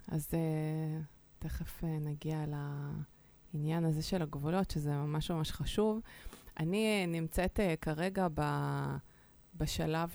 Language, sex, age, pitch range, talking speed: Hebrew, female, 20-39, 150-180 Hz, 90 wpm